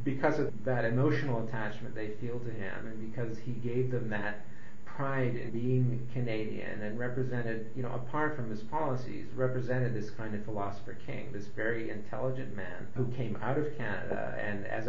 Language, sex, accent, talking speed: English, male, American, 175 wpm